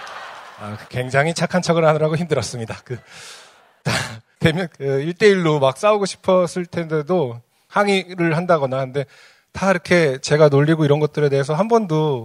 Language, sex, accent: Korean, male, native